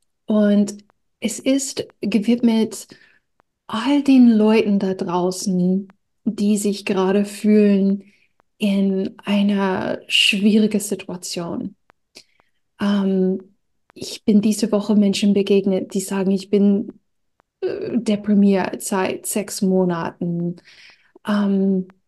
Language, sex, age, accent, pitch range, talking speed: German, female, 30-49, German, 190-215 Hz, 90 wpm